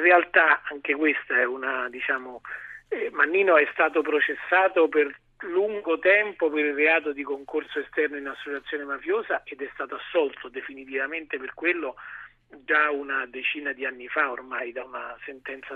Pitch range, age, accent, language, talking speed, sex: 145-200 Hz, 40-59, native, Italian, 155 wpm, male